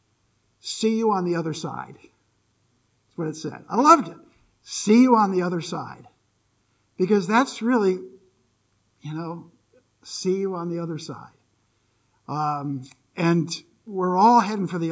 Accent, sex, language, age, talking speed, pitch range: American, male, English, 50-69, 150 wpm, 175-255 Hz